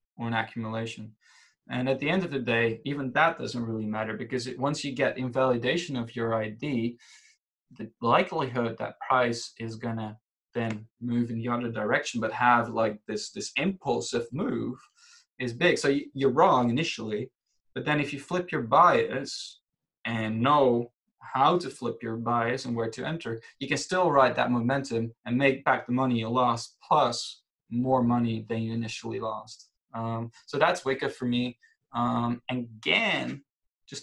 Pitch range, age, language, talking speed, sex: 115-130 Hz, 20-39, English, 170 wpm, male